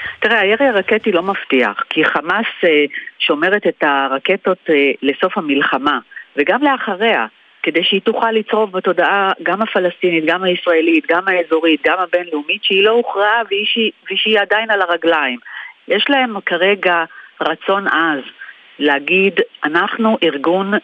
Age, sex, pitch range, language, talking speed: 40-59, female, 160-210 Hz, Hebrew, 125 wpm